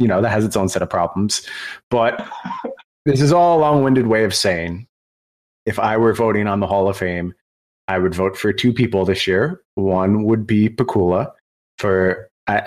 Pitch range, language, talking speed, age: 90-110 Hz, English, 195 wpm, 30-49